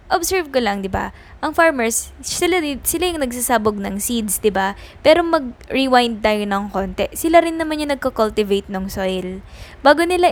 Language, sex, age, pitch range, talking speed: Filipino, female, 10-29, 205-285 Hz, 170 wpm